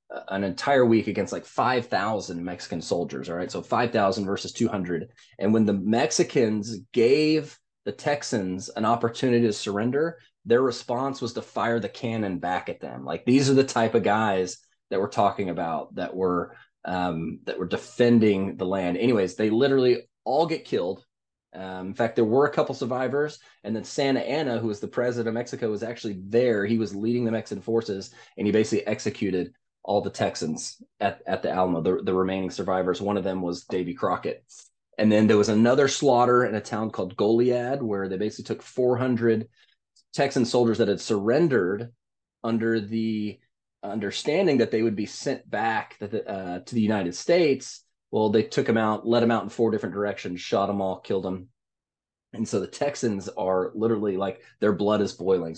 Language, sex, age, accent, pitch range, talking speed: English, male, 20-39, American, 95-120 Hz, 185 wpm